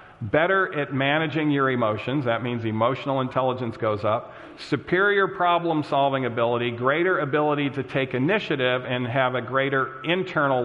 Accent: American